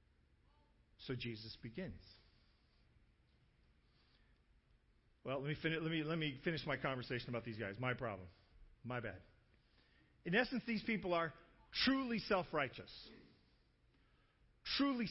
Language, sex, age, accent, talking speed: English, male, 40-59, American, 115 wpm